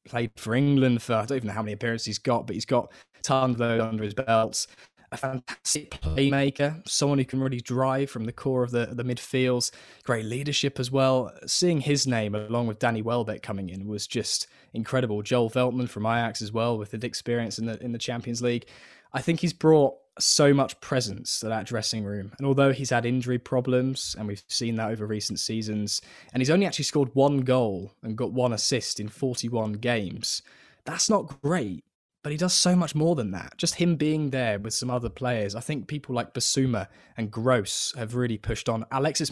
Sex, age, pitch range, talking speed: male, 20-39, 110-135 Hz, 205 wpm